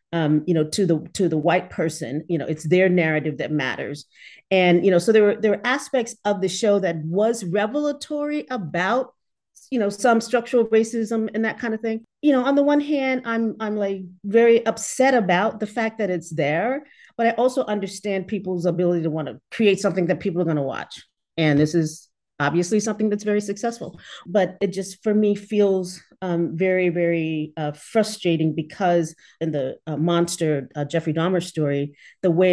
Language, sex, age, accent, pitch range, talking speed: English, female, 40-59, American, 165-215 Hz, 195 wpm